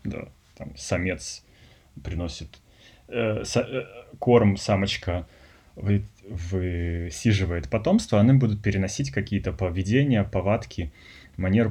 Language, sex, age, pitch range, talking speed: Russian, male, 20-39, 80-105 Hz, 95 wpm